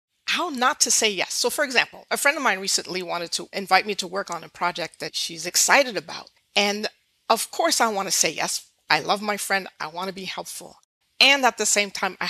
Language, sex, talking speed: English, female, 240 wpm